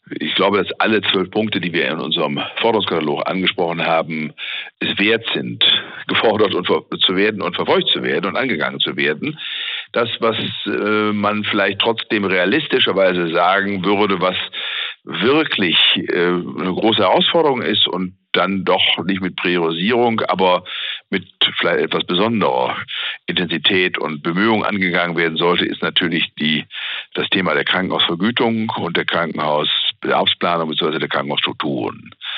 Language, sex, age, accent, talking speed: German, male, 60-79, German, 140 wpm